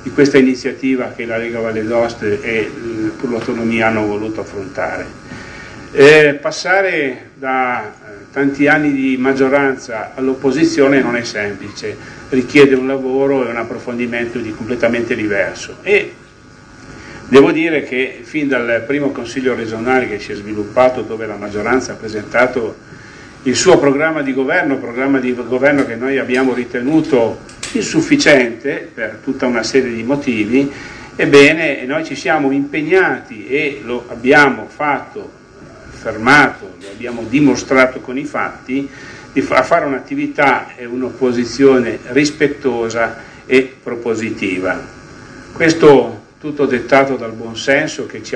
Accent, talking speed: native, 130 wpm